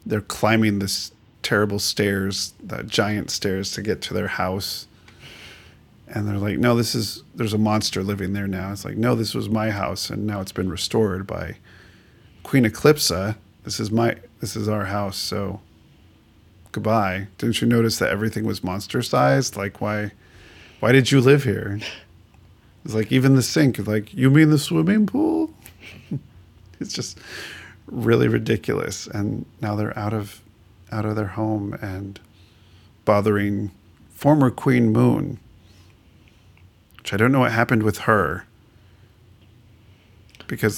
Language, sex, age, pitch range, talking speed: English, male, 40-59, 95-115 Hz, 150 wpm